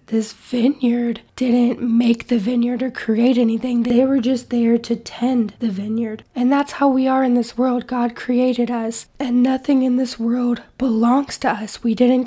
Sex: female